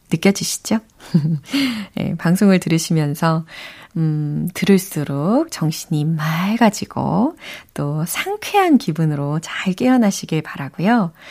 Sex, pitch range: female, 165-235 Hz